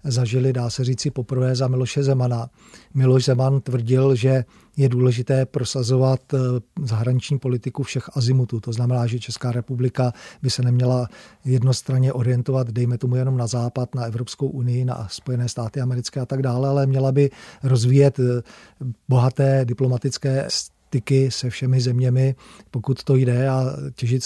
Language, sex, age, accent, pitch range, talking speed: Czech, male, 40-59, native, 125-130 Hz, 145 wpm